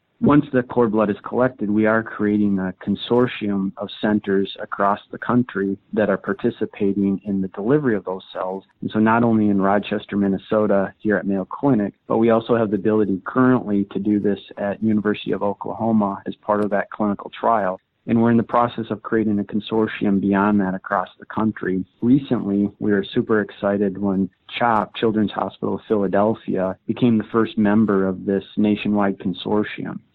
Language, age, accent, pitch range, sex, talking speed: English, 40-59, American, 100-110 Hz, male, 175 wpm